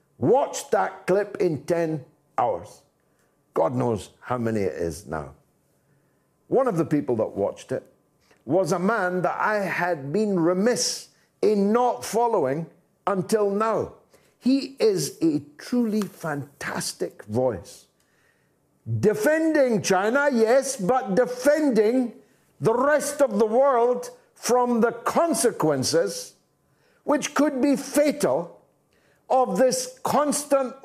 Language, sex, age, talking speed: English, male, 60-79, 115 wpm